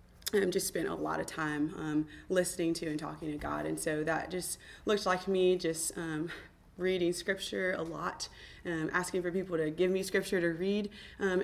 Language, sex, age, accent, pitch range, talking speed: English, female, 20-39, American, 170-200 Hz, 195 wpm